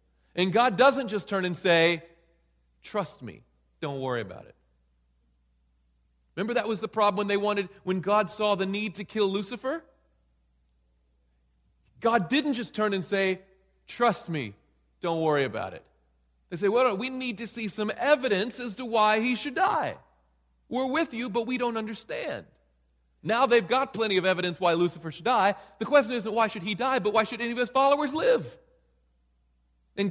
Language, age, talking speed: English, 40-59, 175 wpm